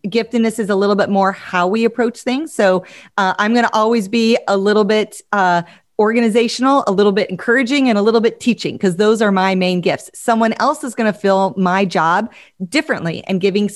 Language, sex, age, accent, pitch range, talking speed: English, female, 30-49, American, 185-235 Hz, 210 wpm